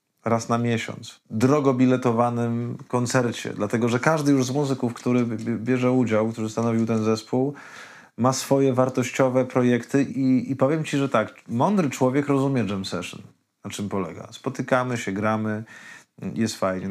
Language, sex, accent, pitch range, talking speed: Polish, male, native, 110-130 Hz, 150 wpm